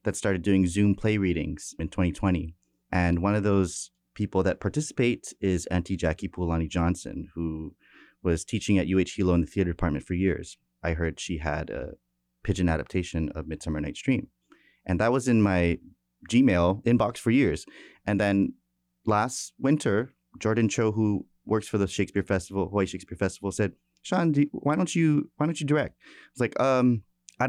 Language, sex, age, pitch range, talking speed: English, male, 30-49, 90-115 Hz, 180 wpm